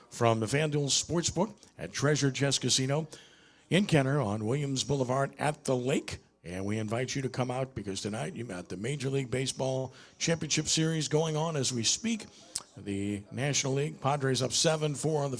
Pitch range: 120-145 Hz